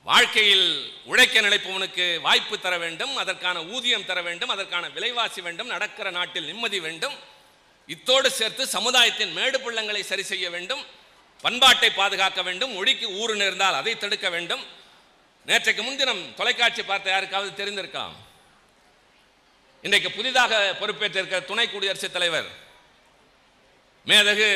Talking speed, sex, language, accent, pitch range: 115 wpm, male, Tamil, native, 185-230 Hz